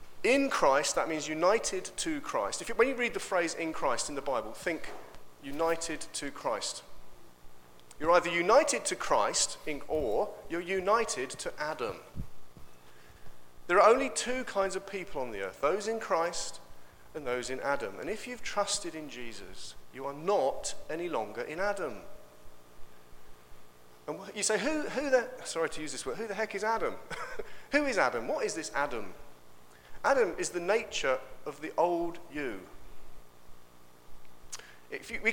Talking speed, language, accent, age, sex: 165 wpm, English, British, 40-59, male